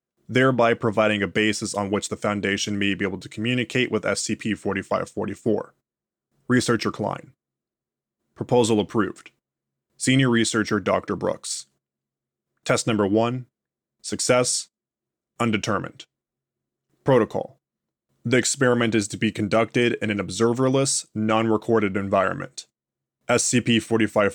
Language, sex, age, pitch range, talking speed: English, male, 20-39, 105-120 Hz, 100 wpm